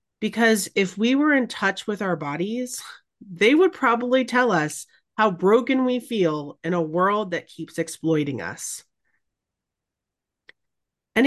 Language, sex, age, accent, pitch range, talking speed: English, female, 30-49, American, 165-230 Hz, 140 wpm